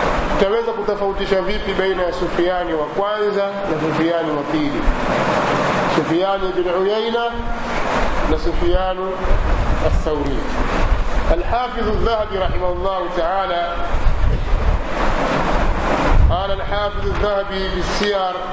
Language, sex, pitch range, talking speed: Swahili, male, 175-200 Hz, 70 wpm